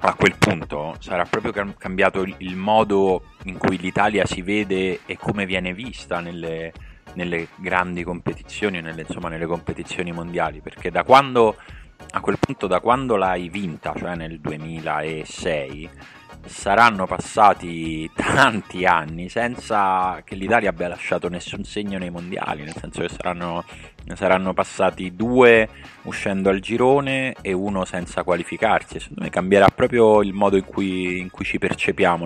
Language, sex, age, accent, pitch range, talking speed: Italian, male, 30-49, native, 85-100 Hz, 145 wpm